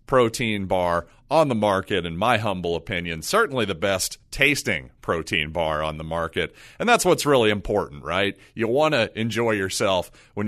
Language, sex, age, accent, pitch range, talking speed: English, male, 30-49, American, 105-140 Hz, 170 wpm